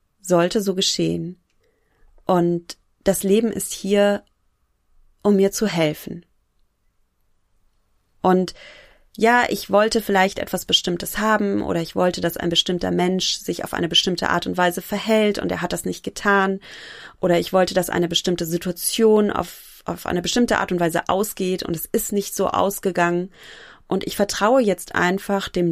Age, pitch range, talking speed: 30-49, 170-200 Hz, 160 wpm